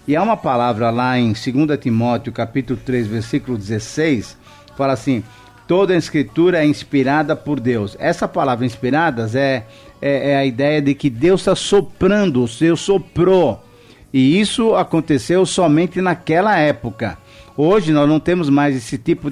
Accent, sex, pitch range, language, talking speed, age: Brazilian, male, 125-155 Hz, Portuguese, 155 wpm, 50-69